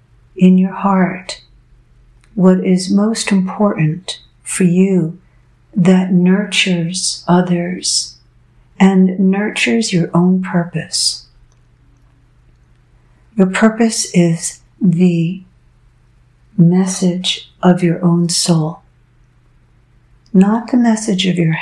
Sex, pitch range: female, 125-185 Hz